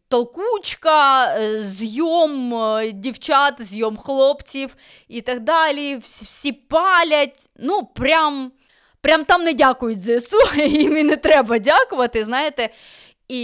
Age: 20-39